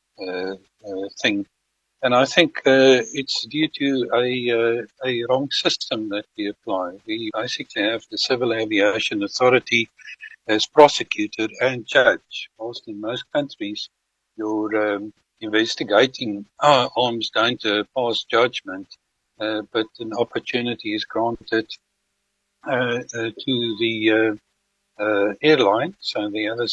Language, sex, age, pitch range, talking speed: English, male, 60-79, 110-130 Hz, 125 wpm